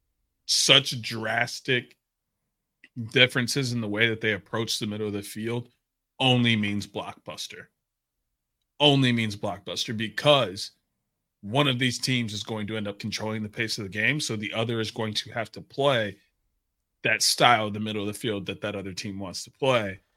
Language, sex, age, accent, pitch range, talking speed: English, male, 30-49, American, 105-125 Hz, 180 wpm